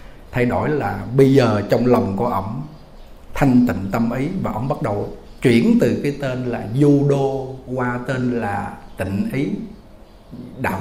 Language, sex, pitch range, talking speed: Vietnamese, male, 125-165 Hz, 160 wpm